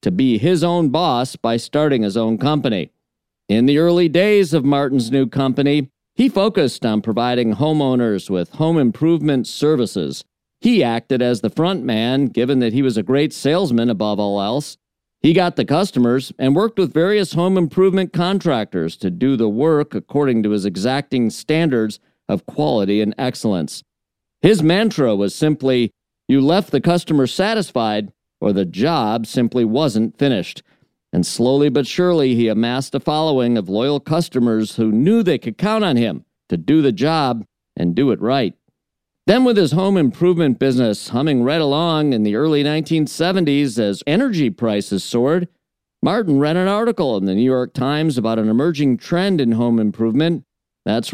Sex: male